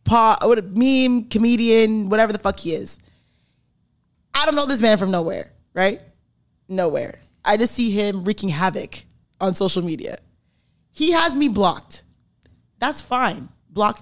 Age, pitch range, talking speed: 20-39, 215-315 Hz, 150 wpm